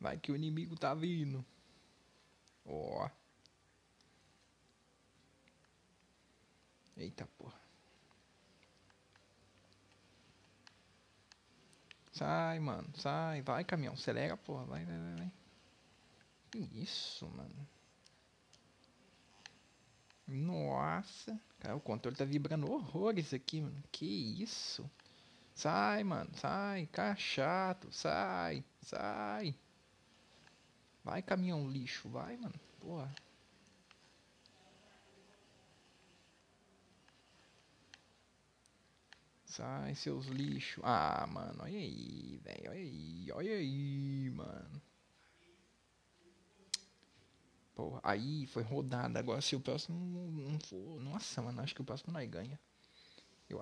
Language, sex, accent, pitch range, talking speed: Portuguese, male, Brazilian, 100-160 Hz, 90 wpm